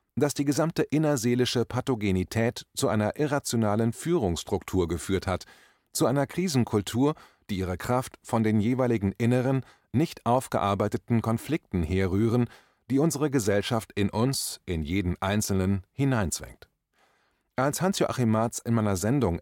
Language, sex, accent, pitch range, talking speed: German, male, German, 95-130 Hz, 125 wpm